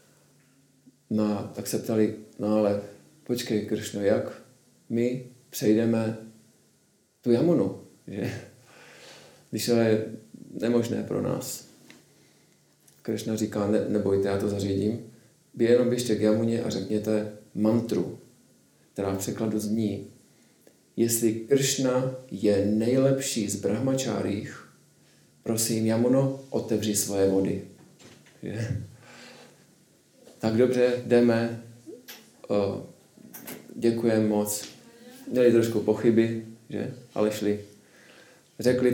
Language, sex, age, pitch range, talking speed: Czech, male, 40-59, 105-120 Hz, 95 wpm